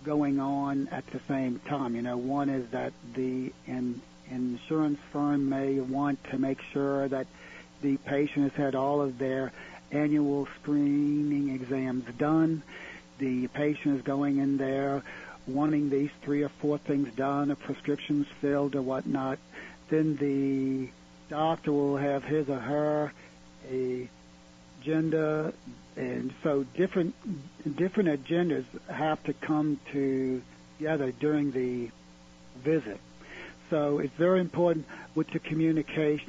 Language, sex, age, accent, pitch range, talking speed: English, male, 60-79, American, 130-155 Hz, 130 wpm